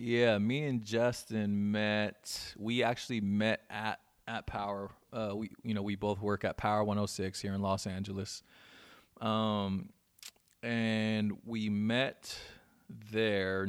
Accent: American